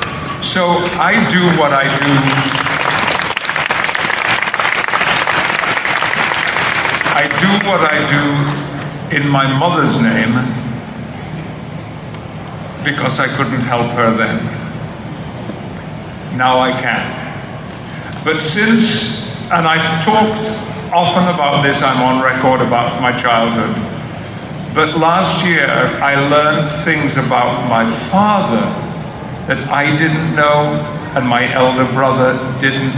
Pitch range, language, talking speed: 130-155 Hz, English, 100 wpm